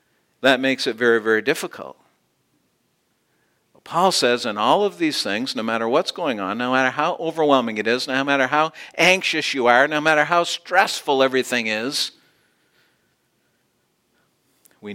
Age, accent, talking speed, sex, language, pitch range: 50-69, American, 150 wpm, male, English, 130-175 Hz